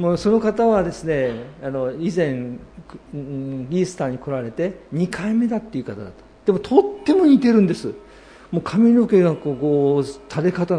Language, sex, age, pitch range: Japanese, male, 50-69, 140-195 Hz